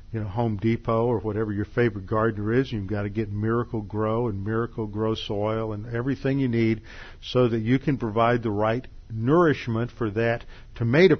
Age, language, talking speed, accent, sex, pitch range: 50-69, English, 190 wpm, American, male, 110-140 Hz